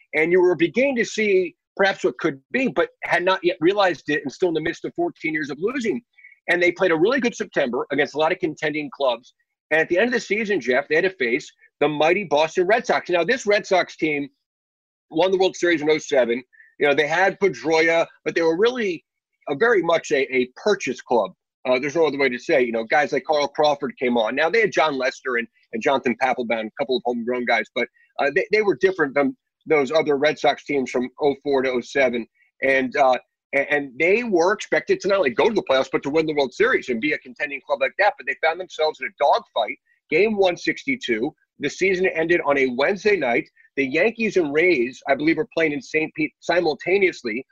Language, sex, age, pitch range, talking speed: English, male, 40-59, 145-215 Hz, 230 wpm